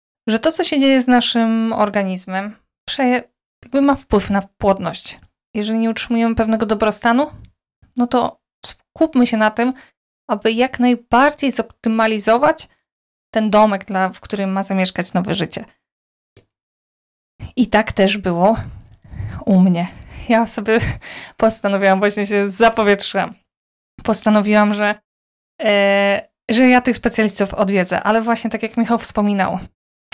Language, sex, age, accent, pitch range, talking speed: Polish, female, 20-39, native, 200-230 Hz, 120 wpm